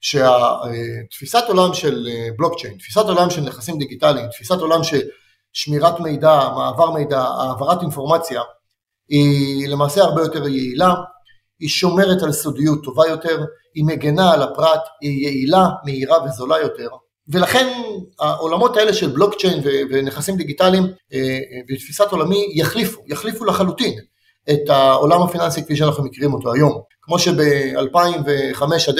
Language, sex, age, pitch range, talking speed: Hebrew, male, 30-49, 135-180 Hz, 130 wpm